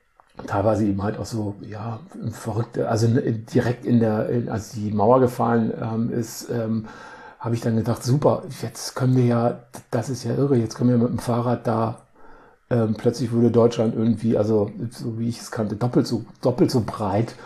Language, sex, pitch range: German, male, 115-130 Hz